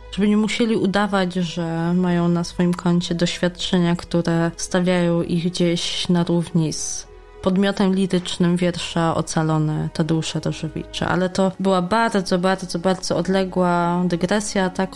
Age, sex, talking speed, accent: 20-39, female, 130 wpm, native